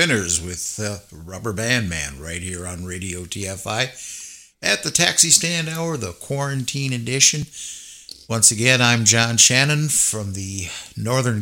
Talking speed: 135 wpm